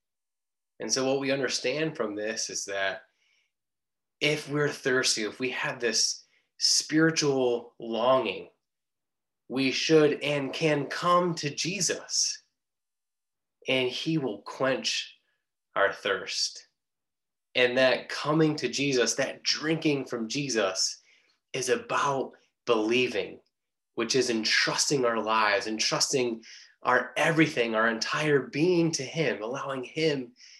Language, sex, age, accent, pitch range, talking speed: English, male, 20-39, American, 120-150 Hz, 115 wpm